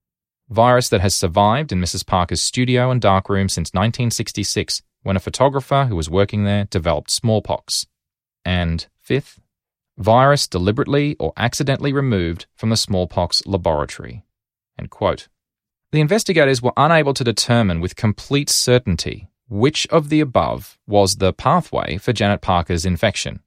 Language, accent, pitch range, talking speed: English, Australian, 95-130 Hz, 140 wpm